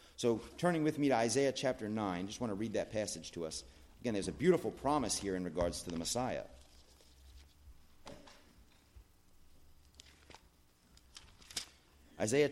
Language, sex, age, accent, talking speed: English, male, 40-59, American, 135 wpm